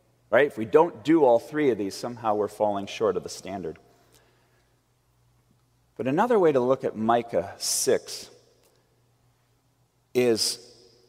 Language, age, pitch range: English, 30-49, 120-140 Hz